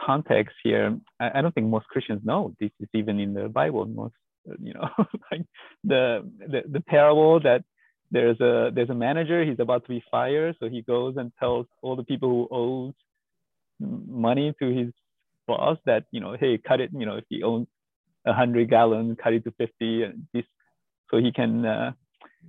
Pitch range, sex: 125-195 Hz, male